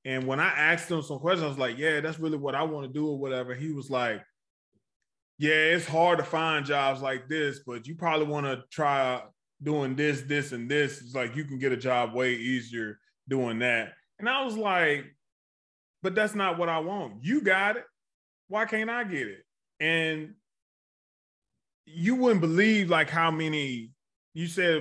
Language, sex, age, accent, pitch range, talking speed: English, male, 20-39, American, 130-165 Hz, 195 wpm